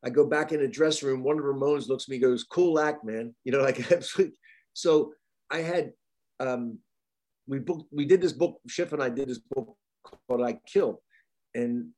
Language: English